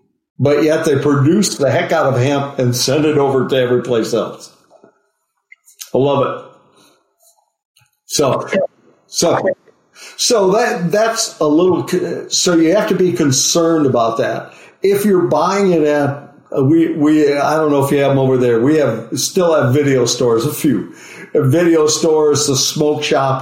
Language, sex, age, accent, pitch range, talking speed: English, male, 50-69, American, 125-155 Hz, 165 wpm